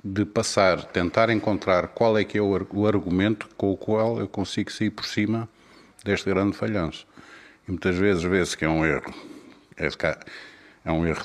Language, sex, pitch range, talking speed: Portuguese, male, 85-105 Hz, 170 wpm